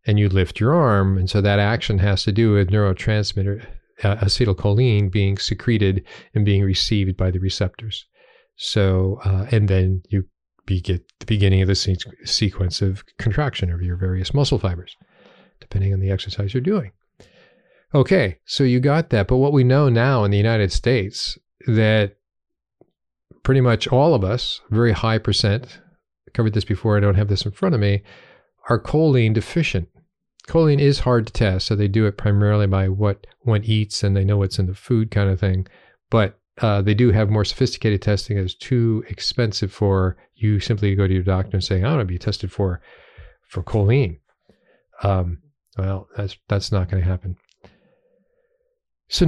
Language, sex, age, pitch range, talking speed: English, male, 40-59, 95-120 Hz, 180 wpm